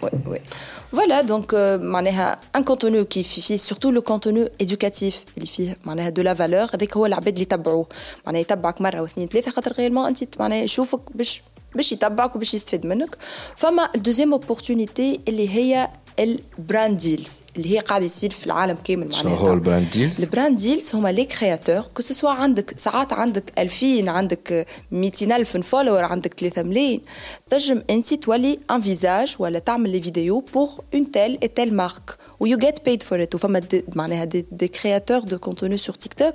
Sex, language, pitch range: female, Arabic, 185-250 Hz